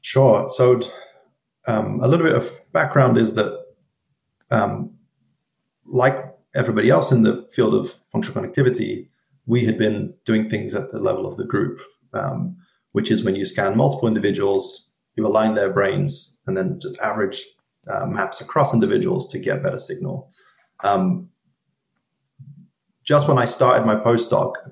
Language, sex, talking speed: English, male, 155 wpm